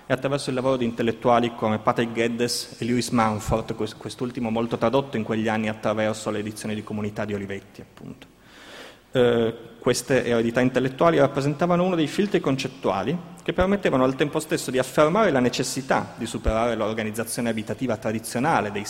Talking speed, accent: 160 wpm, native